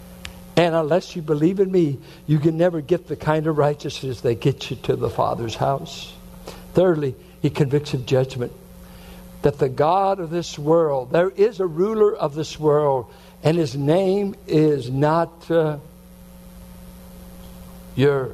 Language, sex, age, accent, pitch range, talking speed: English, male, 60-79, American, 130-175 Hz, 150 wpm